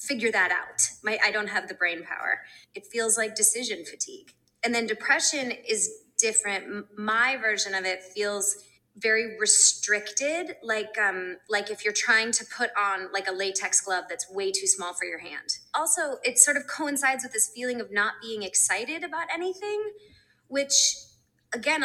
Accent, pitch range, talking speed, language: American, 195-275 Hz, 170 wpm, English